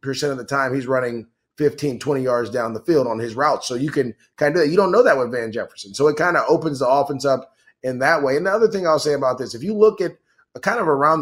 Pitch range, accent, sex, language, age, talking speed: 130-155 Hz, American, male, English, 30-49, 295 wpm